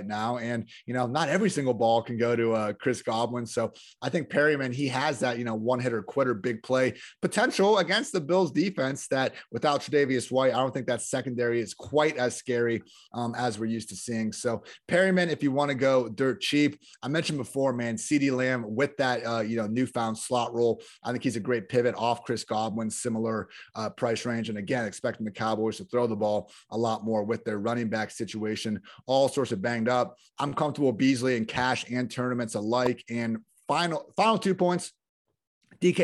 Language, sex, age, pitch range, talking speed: English, male, 30-49, 115-145 Hz, 210 wpm